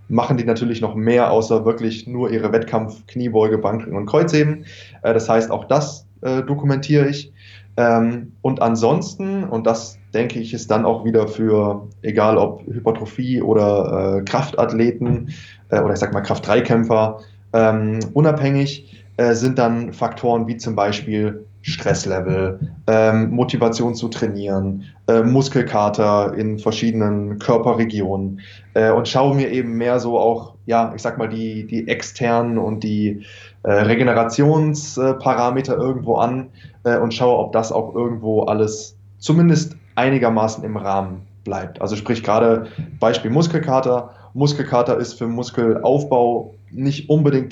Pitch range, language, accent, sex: 105-125 Hz, German, German, male